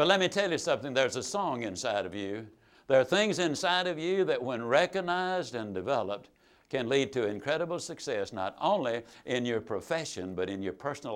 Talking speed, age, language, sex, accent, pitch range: 200 wpm, 60-79, English, male, American, 120-185 Hz